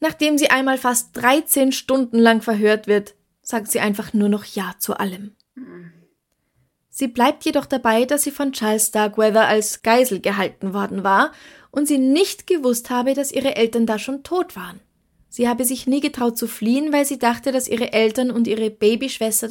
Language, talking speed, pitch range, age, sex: German, 180 wpm, 210-255 Hz, 20-39, female